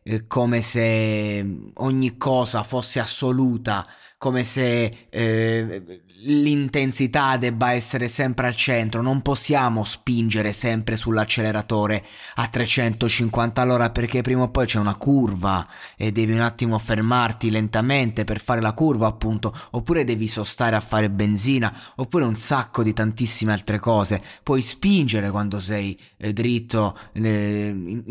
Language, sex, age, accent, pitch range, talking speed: Italian, male, 20-39, native, 105-125 Hz, 130 wpm